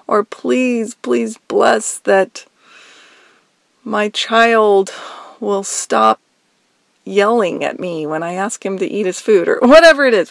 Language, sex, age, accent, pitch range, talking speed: English, female, 40-59, American, 195-235 Hz, 140 wpm